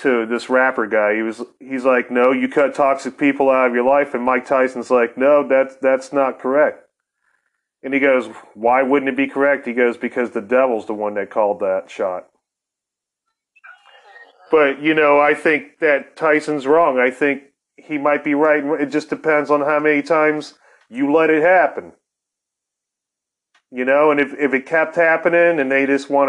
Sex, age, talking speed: male, 30-49, 185 wpm